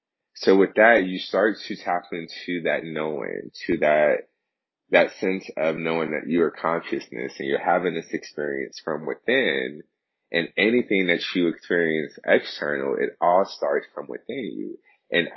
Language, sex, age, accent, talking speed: English, male, 30-49, American, 155 wpm